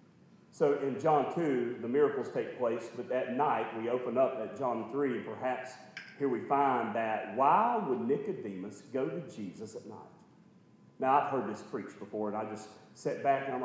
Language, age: English, 40-59